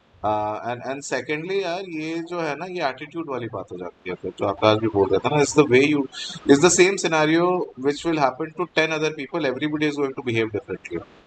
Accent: Indian